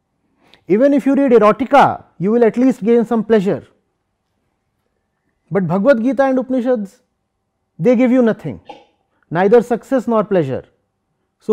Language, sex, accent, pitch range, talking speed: English, male, Indian, 160-230 Hz, 135 wpm